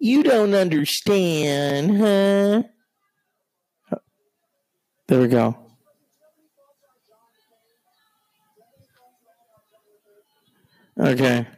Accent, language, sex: American, English, male